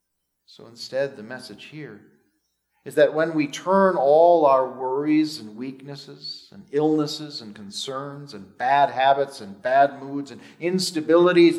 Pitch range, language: 115-175 Hz, English